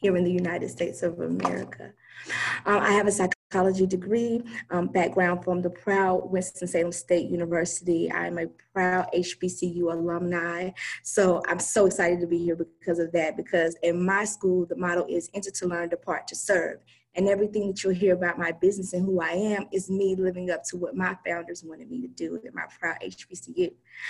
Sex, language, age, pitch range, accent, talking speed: female, English, 20-39, 180-205 Hz, American, 190 wpm